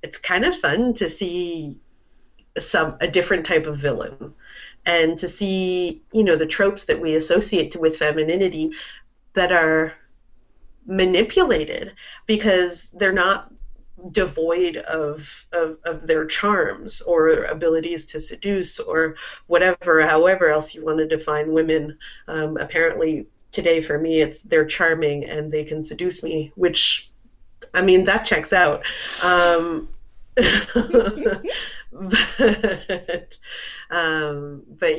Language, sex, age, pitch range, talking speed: English, female, 30-49, 155-185 Hz, 125 wpm